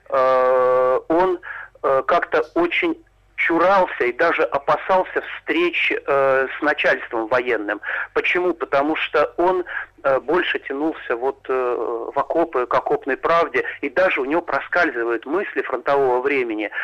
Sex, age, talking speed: male, 40-59, 115 wpm